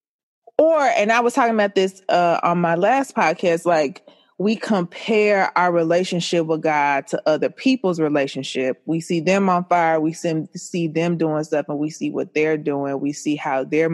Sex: female